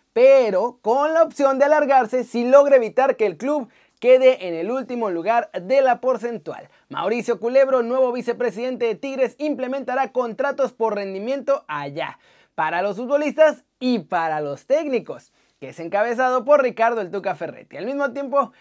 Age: 30-49